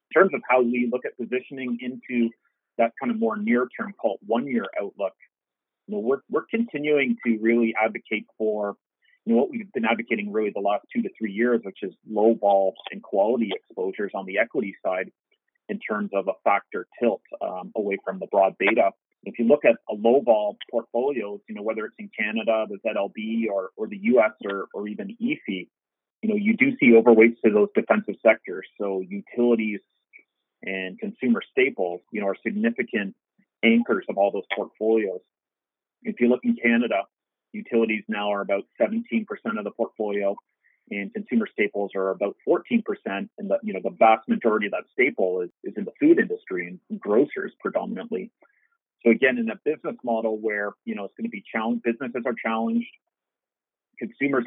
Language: English